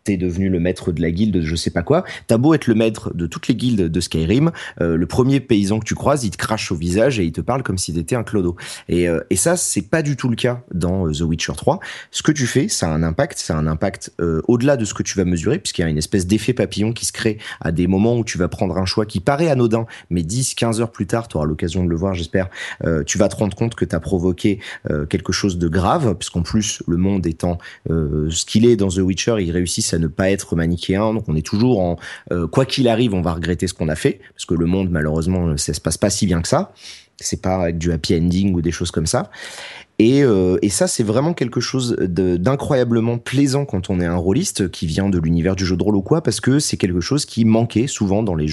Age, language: 30-49, French